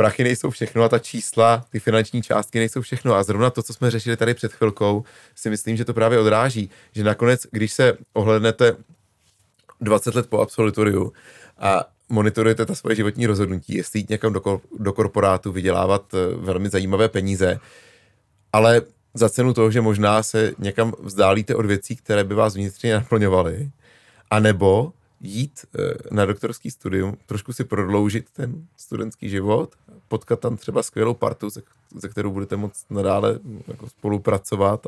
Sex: male